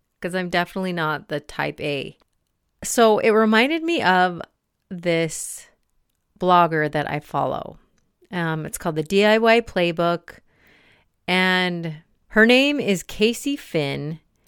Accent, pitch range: American, 155-210 Hz